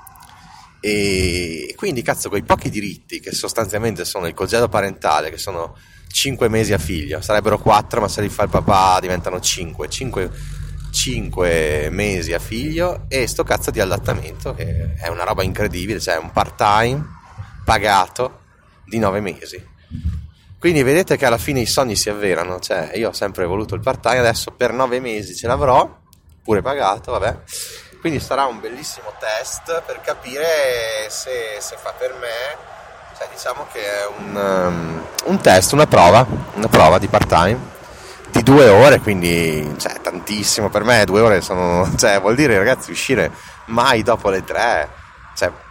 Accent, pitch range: native, 90-120 Hz